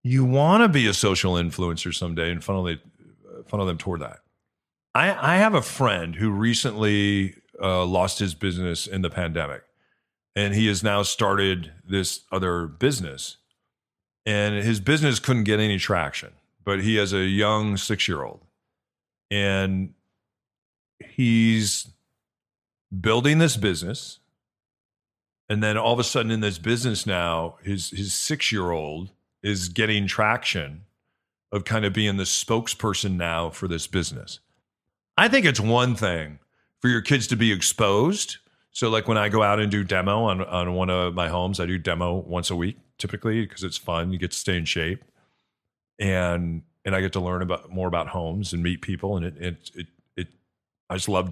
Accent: American